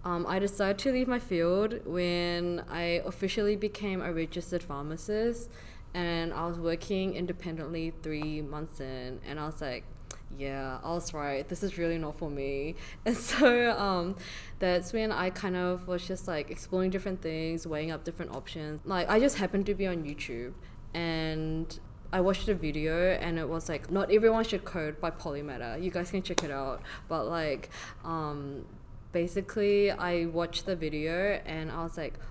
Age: 20-39